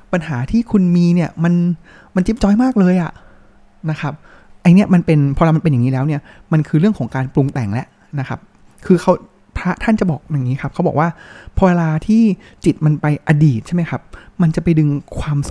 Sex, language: male, Thai